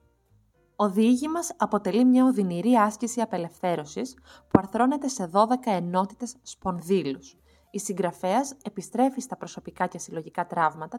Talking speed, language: 115 wpm, Greek